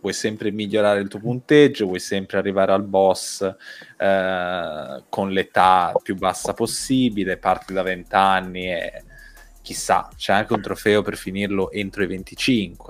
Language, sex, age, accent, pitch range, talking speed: Italian, male, 20-39, native, 95-110 Hz, 150 wpm